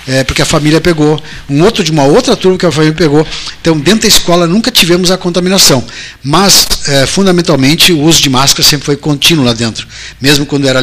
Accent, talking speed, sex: Brazilian, 200 wpm, male